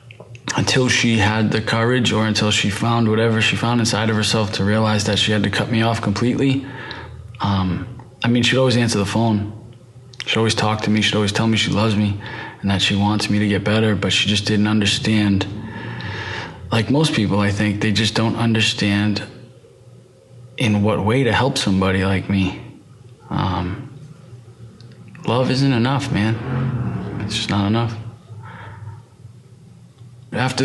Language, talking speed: English, 165 wpm